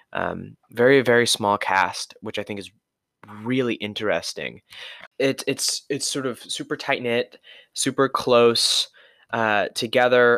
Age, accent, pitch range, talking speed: 20-39, American, 105-130 Hz, 135 wpm